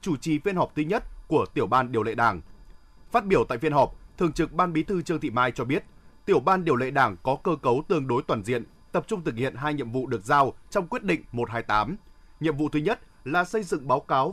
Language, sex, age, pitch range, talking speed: Vietnamese, male, 20-39, 130-175 Hz, 255 wpm